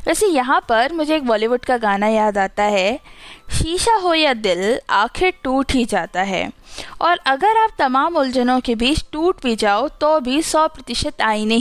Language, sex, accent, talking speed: Hindi, female, native, 180 wpm